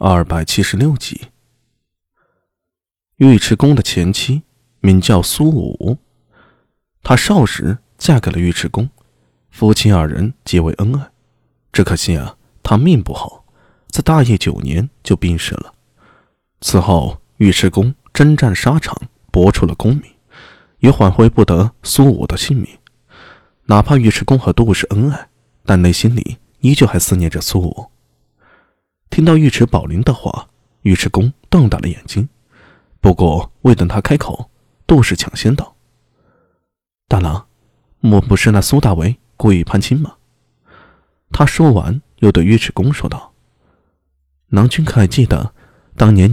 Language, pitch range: Chinese, 90-125 Hz